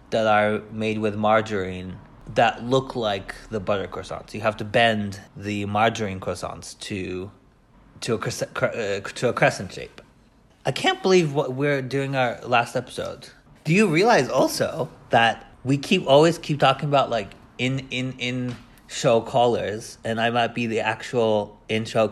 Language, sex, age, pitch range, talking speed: English, male, 30-49, 100-125 Hz, 165 wpm